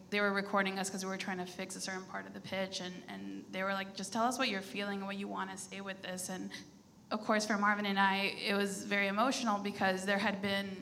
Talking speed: 275 wpm